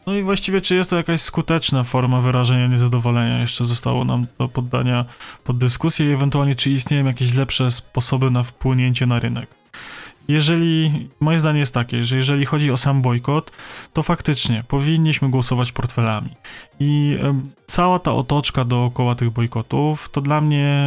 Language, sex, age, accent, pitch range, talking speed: Polish, male, 20-39, native, 120-145 Hz, 160 wpm